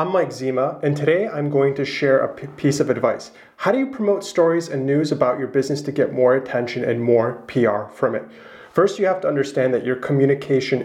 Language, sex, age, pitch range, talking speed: English, male, 30-49, 135-175 Hz, 220 wpm